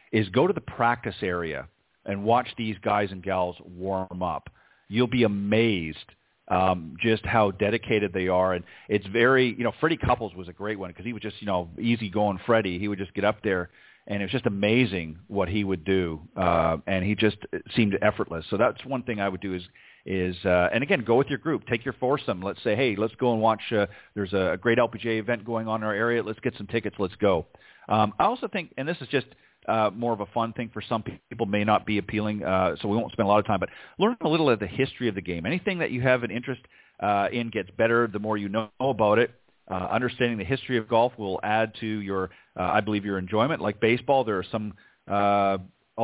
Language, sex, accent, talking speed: English, male, American, 240 wpm